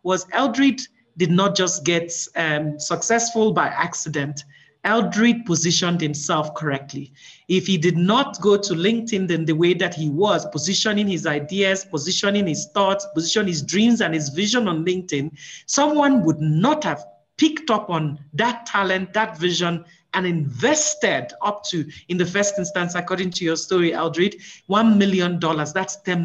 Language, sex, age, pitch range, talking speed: English, male, 40-59, 170-245 Hz, 160 wpm